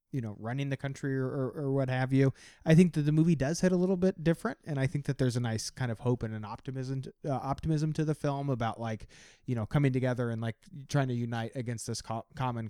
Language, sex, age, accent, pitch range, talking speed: English, male, 30-49, American, 120-145 Hz, 255 wpm